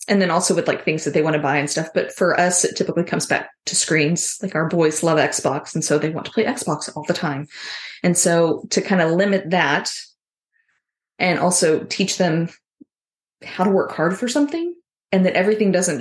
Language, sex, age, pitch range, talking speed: English, female, 20-39, 160-195 Hz, 215 wpm